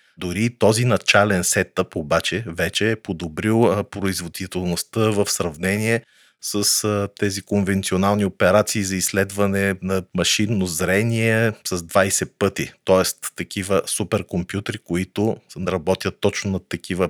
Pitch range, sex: 90-105 Hz, male